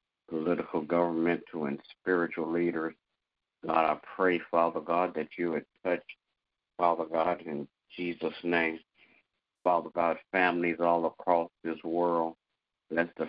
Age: 50-69